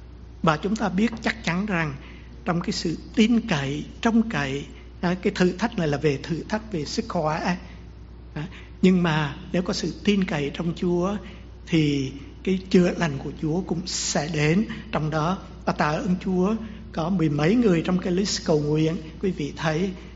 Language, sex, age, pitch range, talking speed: English, male, 60-79, 150-190 Hz, 180 wpm